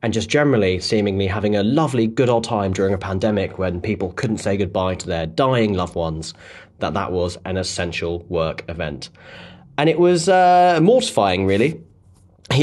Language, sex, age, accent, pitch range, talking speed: English, male, 30-49, British, 95-120 Hz, 175 wpm